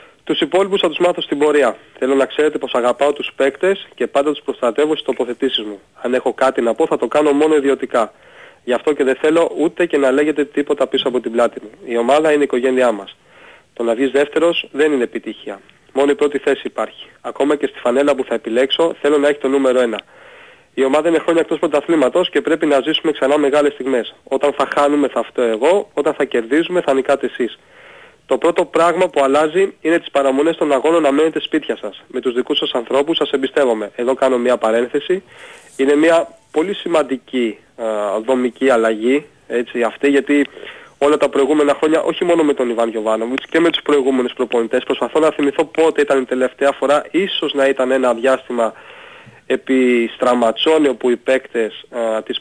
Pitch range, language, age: 125-155 Hz, Greek, 30-49